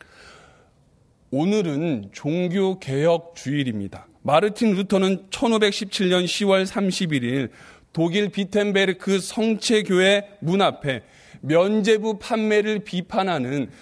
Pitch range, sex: 150-210 Hz, male